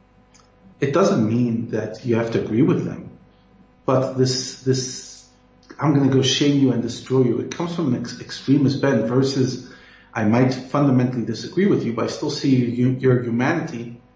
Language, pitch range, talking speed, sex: English, 115-130 Hz, 185 wpm, male